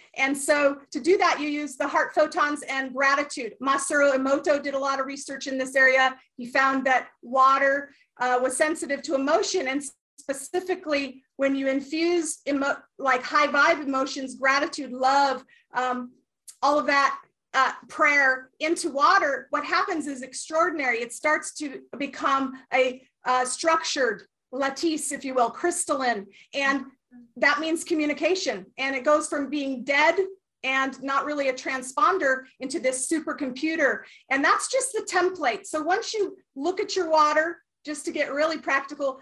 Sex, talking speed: female, 155 wpm